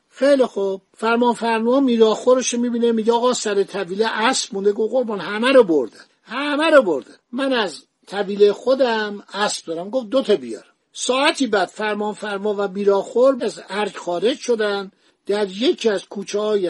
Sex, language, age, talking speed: male, Persian, 60-79, 170 wpm